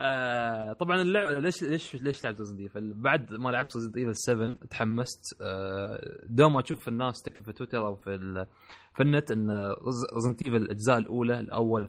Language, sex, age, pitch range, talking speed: Arabic, male, 20-39, 110-135 Hz, 155 wpm